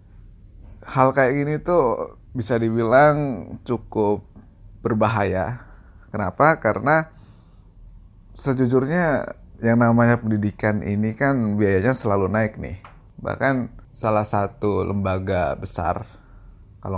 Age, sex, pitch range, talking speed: 30-49, male, 100-120 Hz, 90 wpm